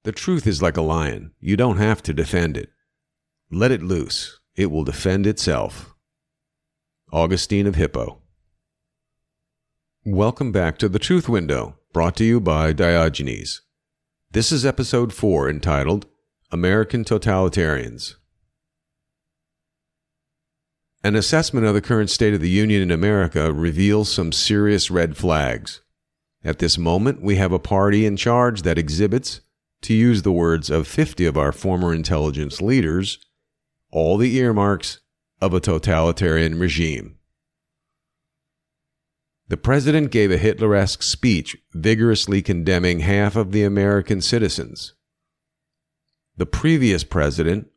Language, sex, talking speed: English, male, 125 wpm